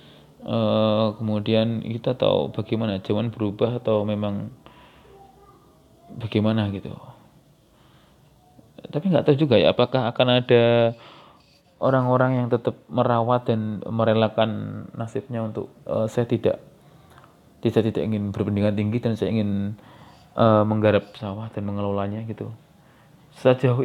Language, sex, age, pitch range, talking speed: Indonesian, male, 20-39, 105-120 Hz, 115 wpm